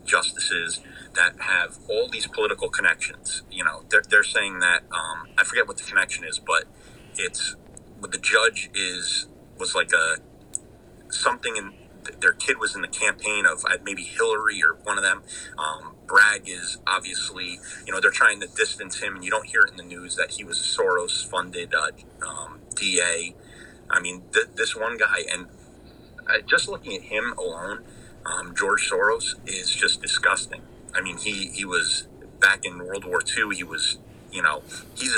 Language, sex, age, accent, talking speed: English, male, 30-49, American, 175 wpm